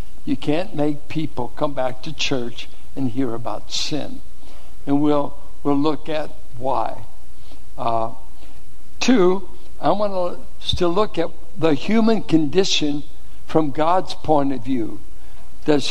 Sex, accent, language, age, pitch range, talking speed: male, American, English, 60-79, 130-165 Hz, 130 wpm